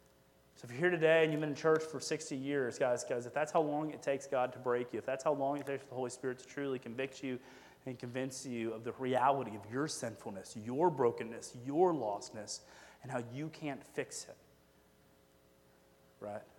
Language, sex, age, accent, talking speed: English, male, 30-49, American, 215 wpm